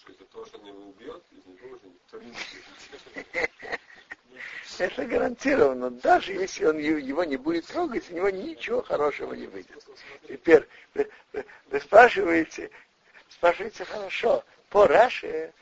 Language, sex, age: Russian, male, 60-79